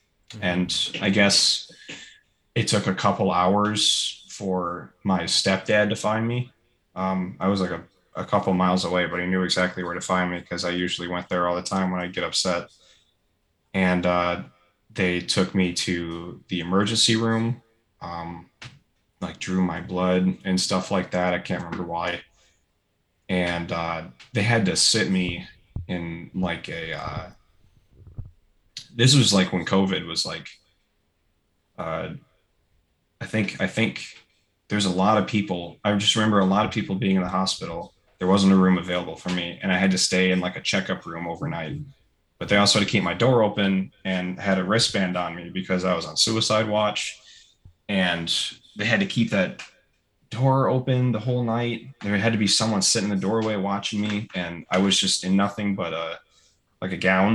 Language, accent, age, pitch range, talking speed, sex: English, American, 20-39, 90-105 Hz, 185 wpm, male